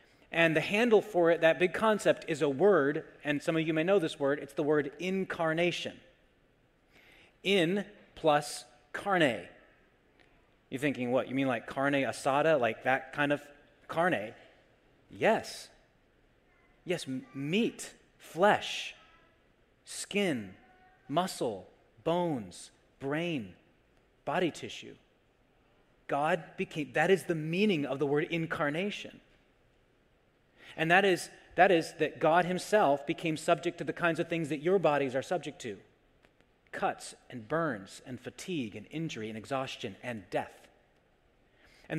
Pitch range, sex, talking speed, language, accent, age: 145-175 Hz, male, 130 wpm, English, American, 30-49